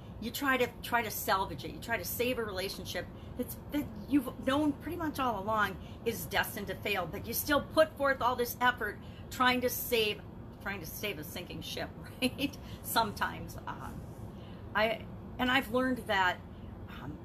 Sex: female